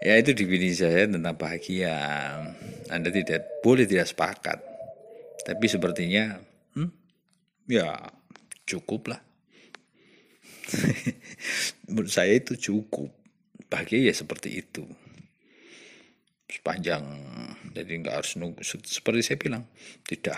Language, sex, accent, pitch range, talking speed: Indonesian, male, native, 95-130 Hz, 100 wpm